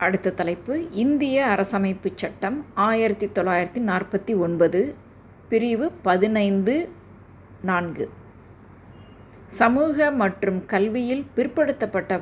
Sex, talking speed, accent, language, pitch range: female, 80 wpm, native, Tamil, 175-225 Hz